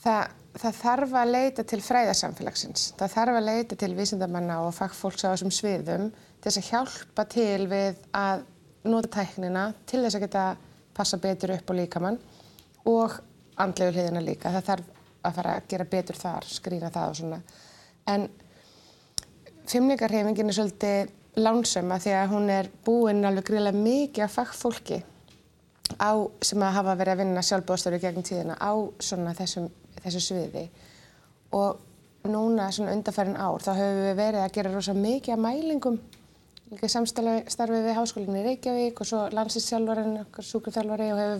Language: English